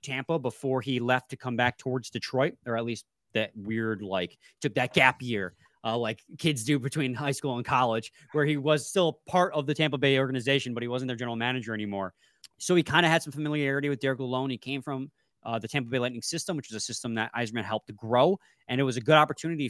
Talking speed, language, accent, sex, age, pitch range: 240 wpm, English, American, male, 20-39, 120-155 Hz